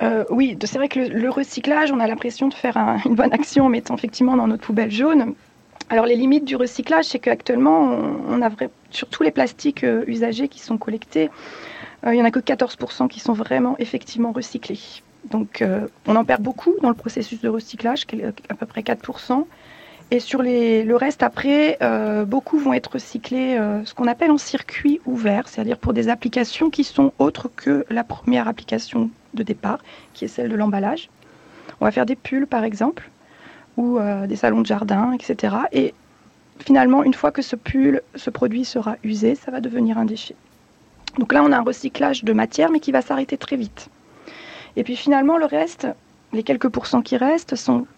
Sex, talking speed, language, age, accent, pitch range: female, 200 wpm, French, 40-59, French, 225-275 Hz